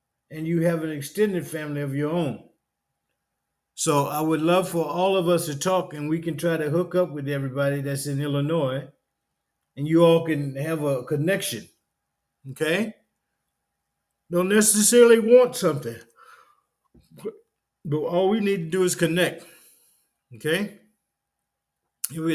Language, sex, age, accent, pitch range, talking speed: English, male, 50-69, American, 130-170 Hz, 140 wpm